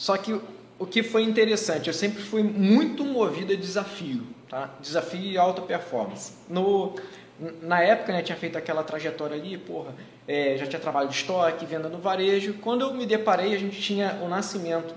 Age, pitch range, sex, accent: 20-39, 165-220 Hz, male, Brazilian